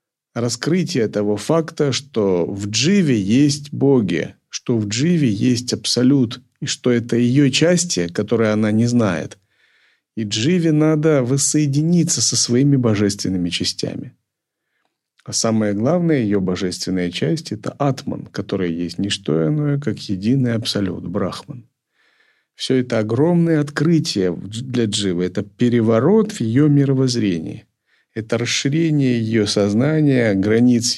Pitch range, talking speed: 105-145 Hz, 120 wpm